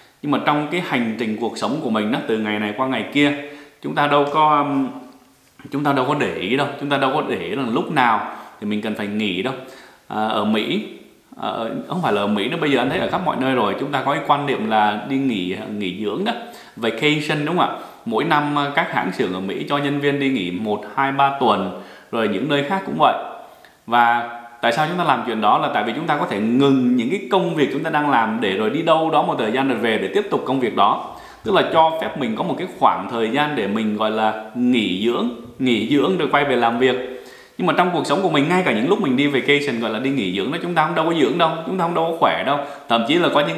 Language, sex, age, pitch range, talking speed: English, male, 20-39, 115-150 Hz, 280 wpm